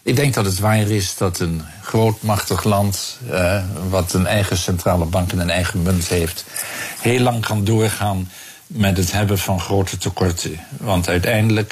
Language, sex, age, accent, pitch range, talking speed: Dutch, male, 50-69, Dutch, 95-120 Hz, 170 wpm